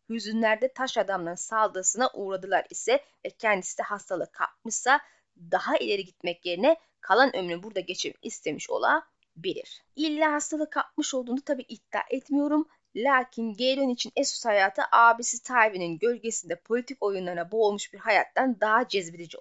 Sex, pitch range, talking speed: female, 215-295 Hz, 135 wpm